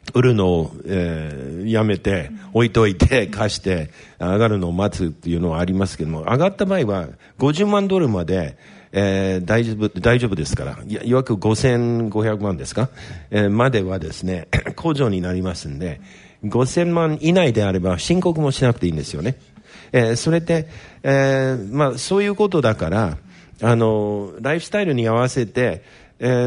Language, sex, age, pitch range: Japanese, male, 50-69, 95-125 Hz